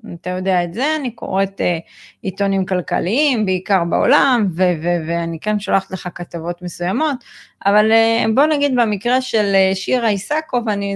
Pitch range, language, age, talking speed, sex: 175-215 Hz, Hebrew, 30-49, 135 wpm, female